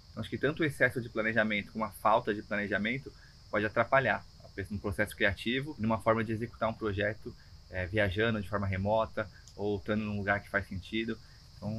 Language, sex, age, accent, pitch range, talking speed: Portuguese, male, 20-39, Brazilian, 100-120 Hz, 190 wpm